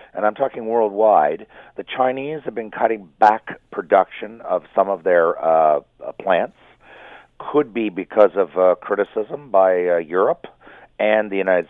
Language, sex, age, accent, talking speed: English, male, 50-69, American, 150 wpm